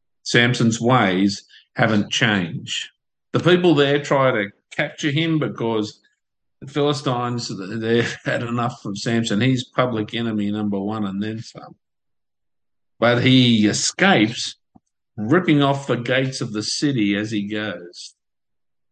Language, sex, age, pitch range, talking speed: English, male, 50-69, 105-135 Hz, 125 wpm